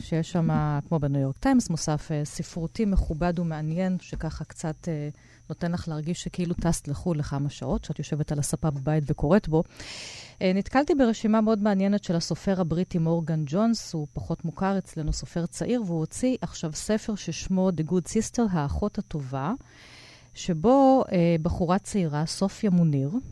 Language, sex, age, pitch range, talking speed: Hebrew, female, 40-59, 160-210 Hz, 145 wpm